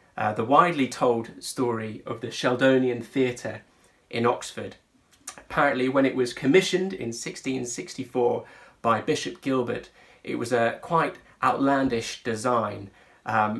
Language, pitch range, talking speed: English, 115-130 Hz, 125 wpm